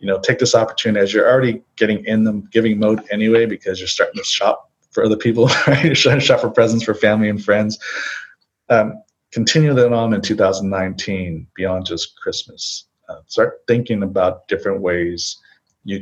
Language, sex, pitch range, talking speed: English, male, 95-115 Hz, 185 wpm